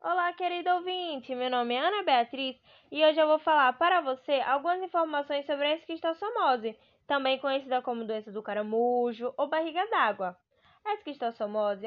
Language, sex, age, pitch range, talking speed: Portuguese, female, 10-29, 230-325 Hz, 155 wpm